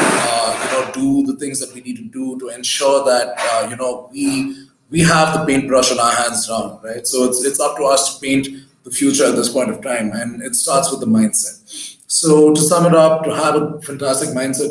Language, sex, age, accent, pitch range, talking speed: English, male, 20-39, Indian, 125-155 Hz, 225 wpm